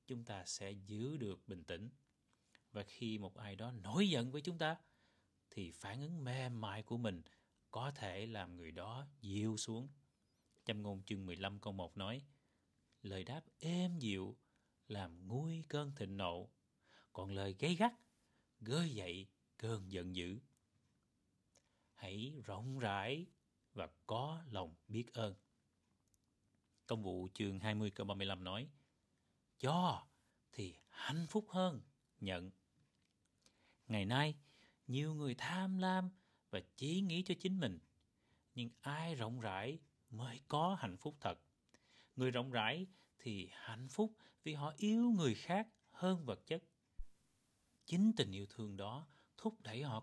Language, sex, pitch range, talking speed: Vietnamese, male, 100-155 Hz, 145 wpm